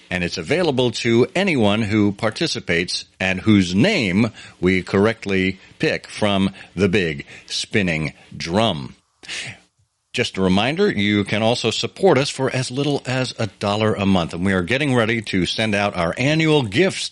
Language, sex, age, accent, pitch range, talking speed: English, male, 50-69, American, 95-125 Hz, 160 wpm